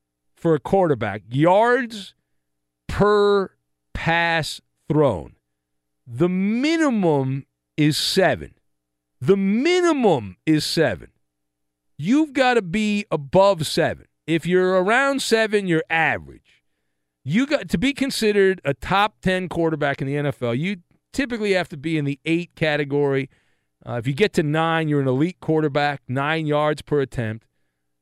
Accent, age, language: American, 50-69, English